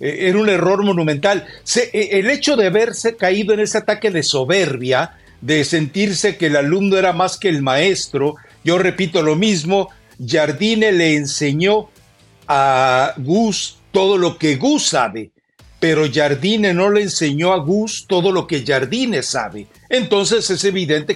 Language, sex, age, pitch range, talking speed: Spanish, male, 50-69, 150-205 Hz, 155 wpm